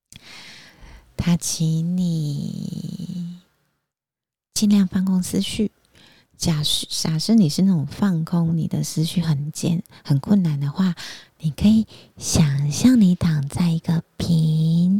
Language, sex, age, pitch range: Chinese, female, 30-49, 155-185 Hz